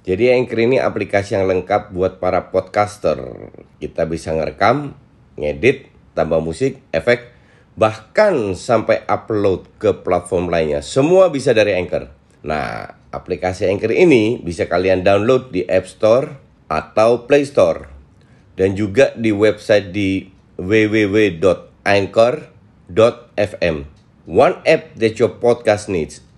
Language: Indonesian